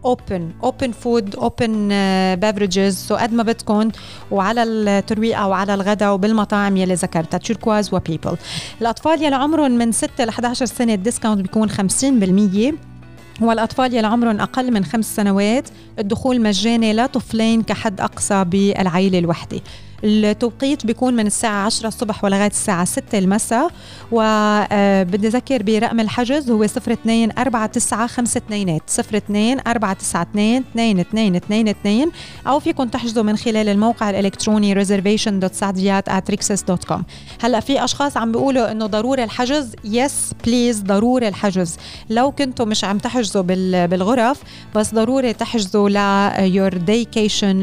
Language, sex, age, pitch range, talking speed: Arabic, female, 30-49, 200-235 Hz, 115 wpm